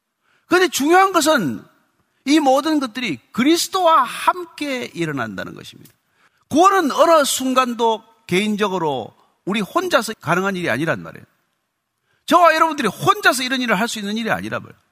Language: Korean